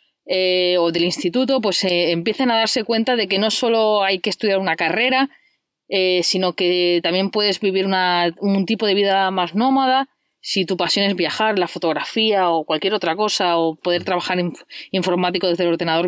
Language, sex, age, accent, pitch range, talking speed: Spanish, female, 20-39, Spanish, 175-225 Hz, 190 wpm